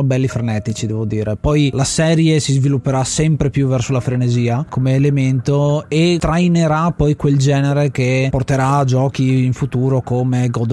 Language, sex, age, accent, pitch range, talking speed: Italian, male, 20-39, native, 125-150 Hz, 155 wpm